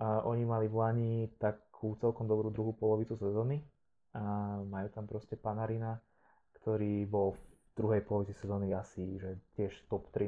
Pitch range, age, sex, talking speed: 105-115 Hz, 20-39, male, 160 wpm